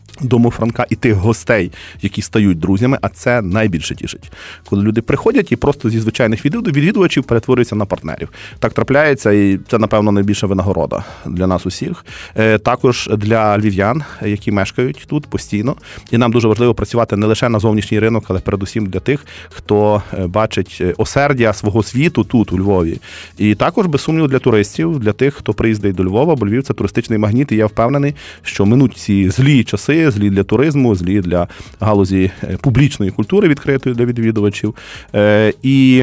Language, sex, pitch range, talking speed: Ukrainian, male, 100-125 Hz, 165 wpm